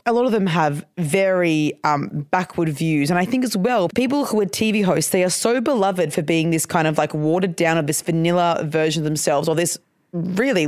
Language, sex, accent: English, female, Australian